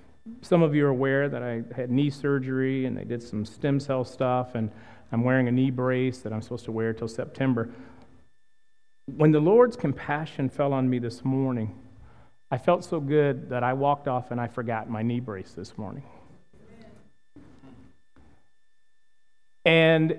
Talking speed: 165 wpm